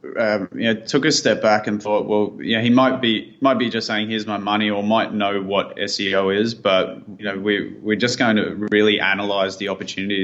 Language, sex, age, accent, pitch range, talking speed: English, male, 20-39, Australian, 95-110 Hz, 235 wpm